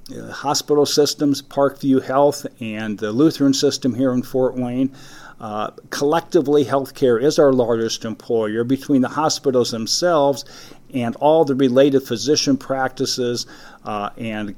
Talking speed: 130 wpm